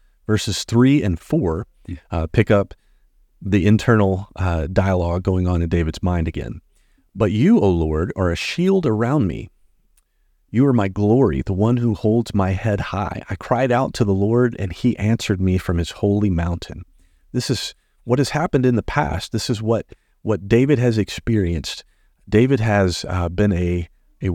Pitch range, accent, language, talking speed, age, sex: 85-115 Hz, American, English, 175 wpm, 40-59, male